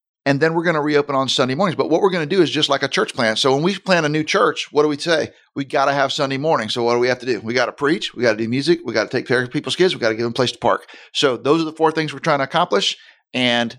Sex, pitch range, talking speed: male, 130-155 Hz, 355 wpm